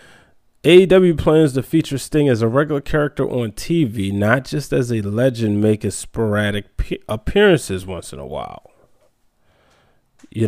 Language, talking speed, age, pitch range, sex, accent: English, 135 wpm, 20-39, 105-130 Hz, male, American